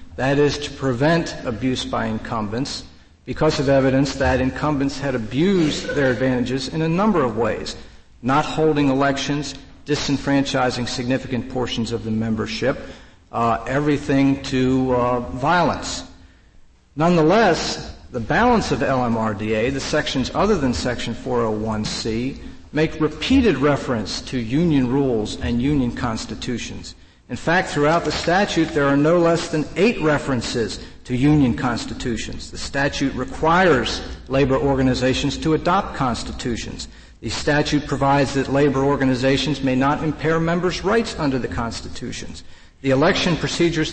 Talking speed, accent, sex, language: 130 wpm, American, male, English